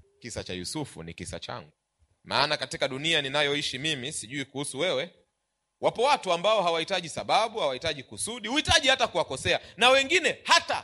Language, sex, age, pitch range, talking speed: Swahili, male, 30-49, 155-245 Hz, 150 wpm